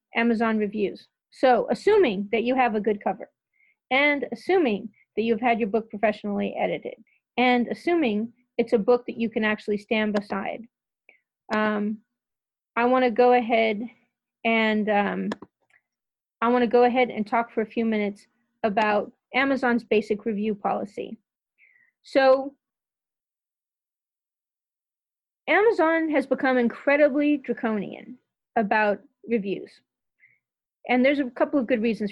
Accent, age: American, 30-49